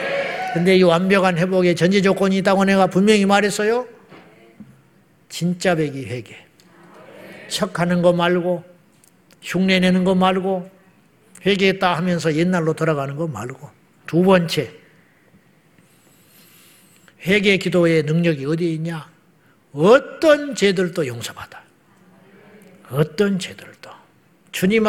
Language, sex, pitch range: Korean, male, 170-210 Hz